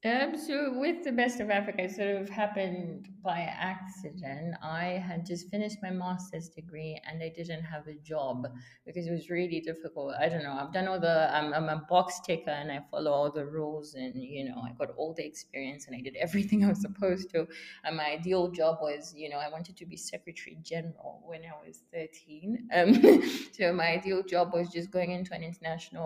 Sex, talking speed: female, 215 wpm